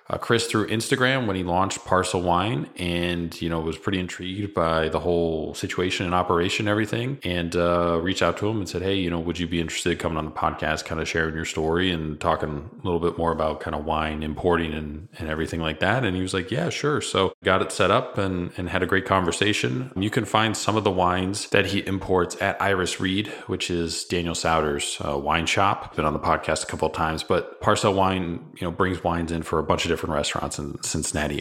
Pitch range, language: 80-95 Hz, English